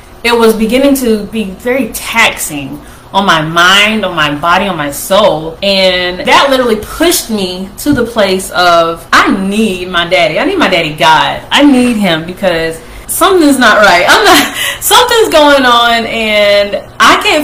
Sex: female